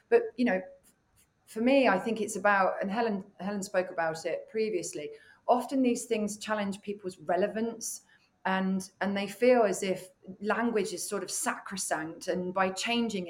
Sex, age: female, 30-49